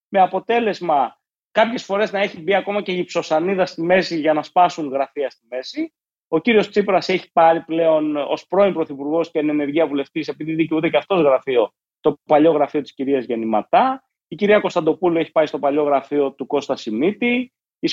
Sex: male